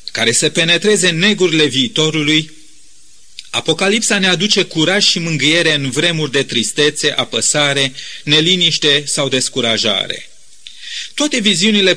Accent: native